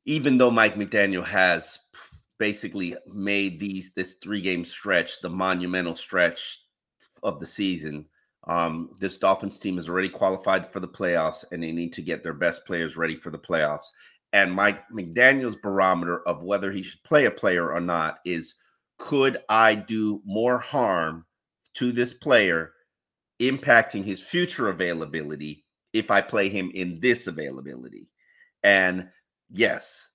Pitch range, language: 85-105 Hz, English